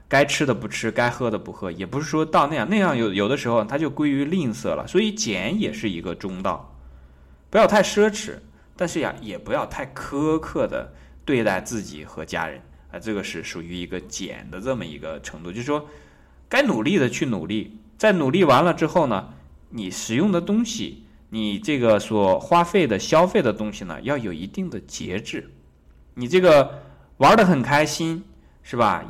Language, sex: Chinese, male